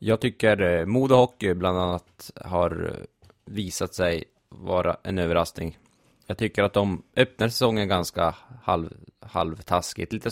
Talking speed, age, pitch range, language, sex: 130 wpm, 20-39, 90-110 Hz, Swedish, male